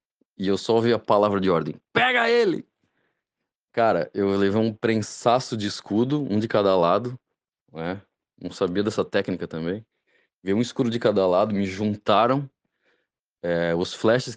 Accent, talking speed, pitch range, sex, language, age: Brazilian, 155 wpm, 95-125 Hz, male, Portuguese, 20-39